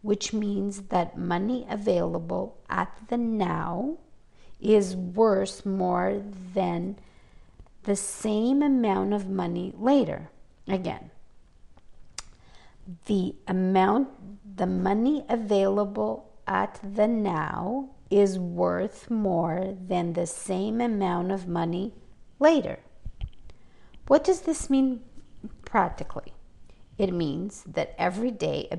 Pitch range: 180-225 Hz